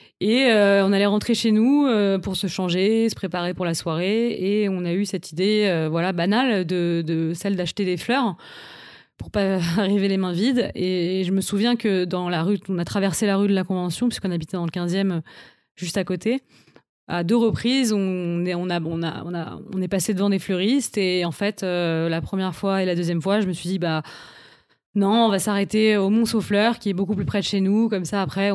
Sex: female